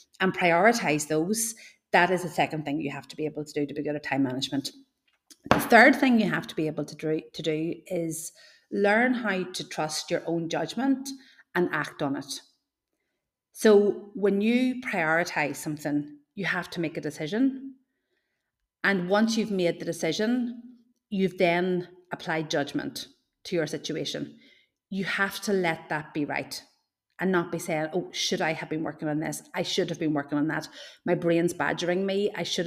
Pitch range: 155-200 Hz